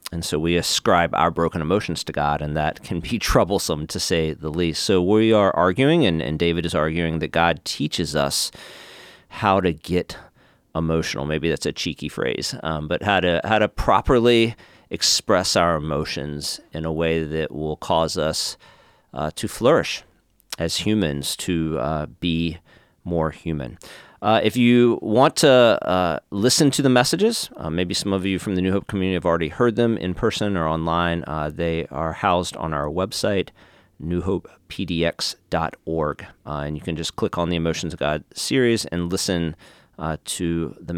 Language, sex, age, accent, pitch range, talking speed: English, male, 40-59, American, 80-100 Hz, 175 wpm